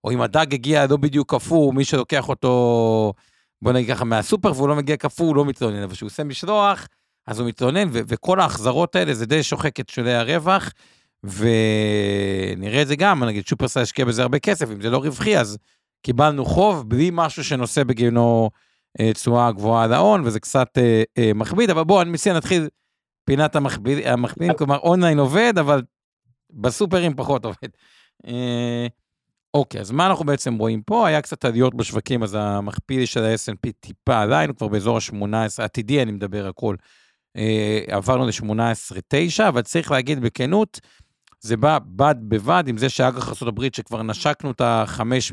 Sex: male